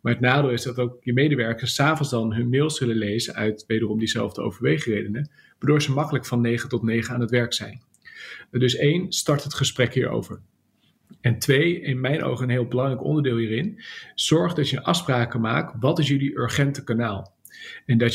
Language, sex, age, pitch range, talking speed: English, male, 40-59, 120-145 Hz, 190 wpm